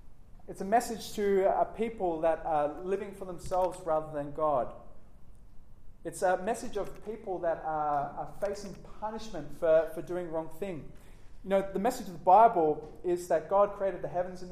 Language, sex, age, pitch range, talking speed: English, male, 20-39, 145-195 Hz, 180 wpm